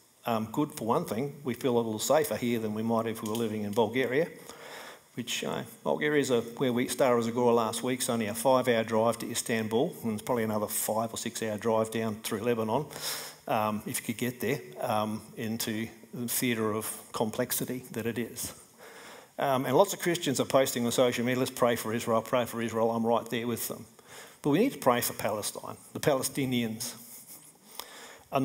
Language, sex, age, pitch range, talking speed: English, male, 50-69, 115-135 Hz, 205 wpm